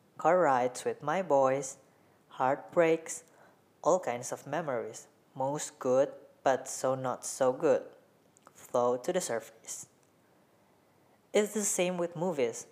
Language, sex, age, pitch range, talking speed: English, female, 20-39, 130-160 Hz, 125 wpm